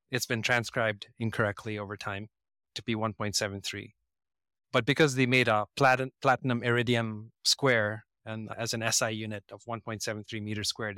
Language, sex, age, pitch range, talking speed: English, male, 30-49, 105-125 Hz, 150 wpm